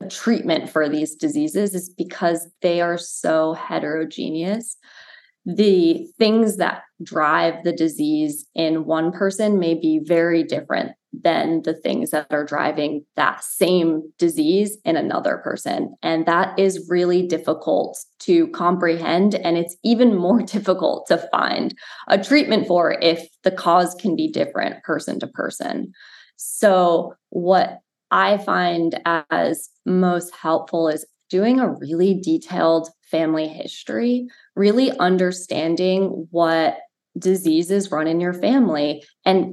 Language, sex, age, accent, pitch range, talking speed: English, female, 20-39, American, 165-210 Hz, 130 wpm